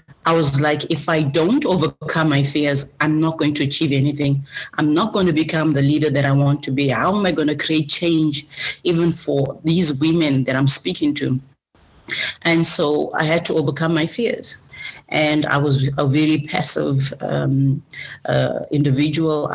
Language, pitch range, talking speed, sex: English, 145-185 Hz, 180 wpm, female